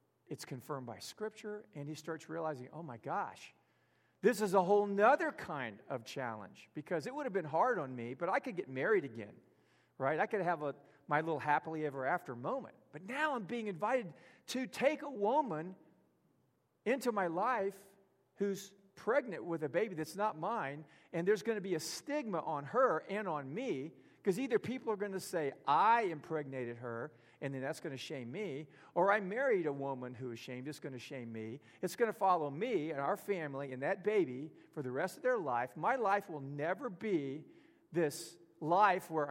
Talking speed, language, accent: 200 wpm, English, American